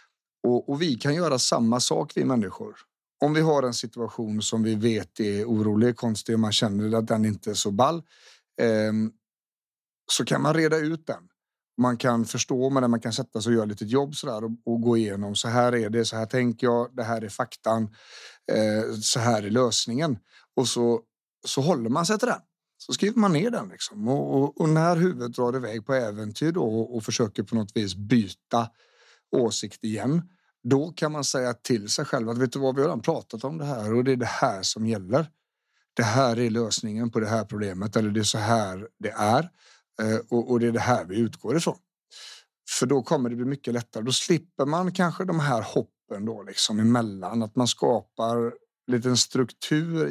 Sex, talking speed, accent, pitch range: male, 210 wpm, native, 110-135 Hz